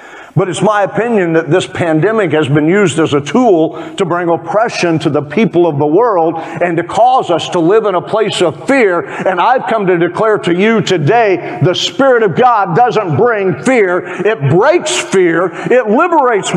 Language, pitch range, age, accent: English, 165-225 Hz, 50-69, American